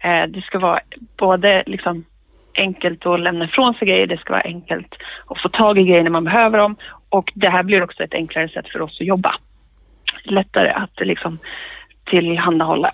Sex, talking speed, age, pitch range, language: female, 185 wpm, 30-49, 175-225 Hz, Swedish